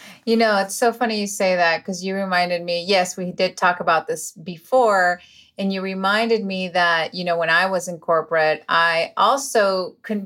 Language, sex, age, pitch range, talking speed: English, female, 30-49, 185-250 Hz, 200 wpm